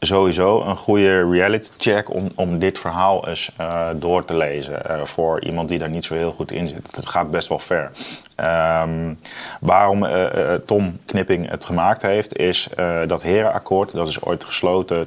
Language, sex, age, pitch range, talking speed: Dutch, male, 30-49, 80-90 Hz, 185 wpm